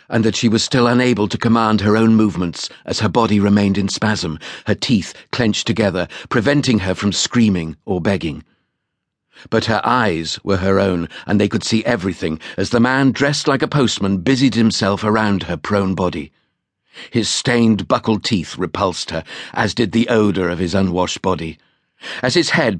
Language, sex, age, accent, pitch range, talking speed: English, male, 50-69, British, 95-120 Hz, 180 wpm